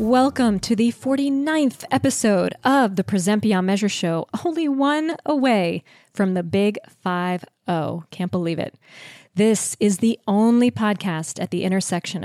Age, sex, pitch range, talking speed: 20-39, female, 175-235 Hz, 145 wpm